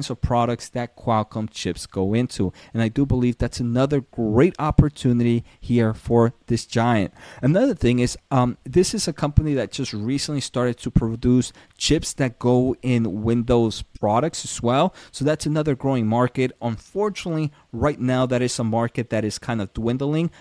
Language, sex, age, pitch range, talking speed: English, male, 30-49, 110-145 Hz, 170 wpm